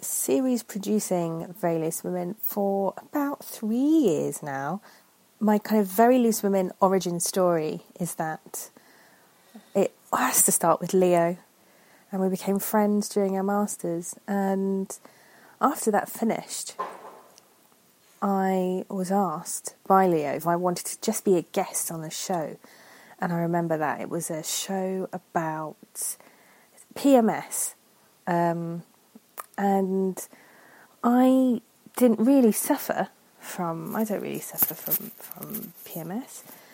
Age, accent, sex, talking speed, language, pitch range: 30-49, British, female, 125 wpm, English, 170-210 Hz